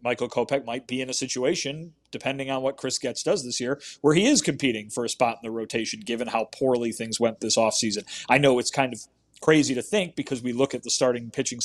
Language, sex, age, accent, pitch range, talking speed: English, male, 30-49, American, 120-140 Hz, 240 wpm